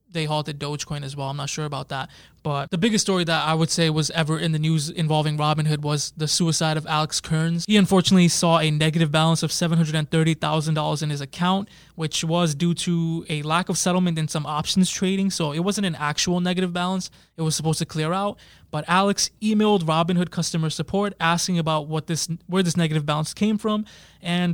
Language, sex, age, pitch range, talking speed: English, male, 20-39, 155-175 Hz, 205 wpm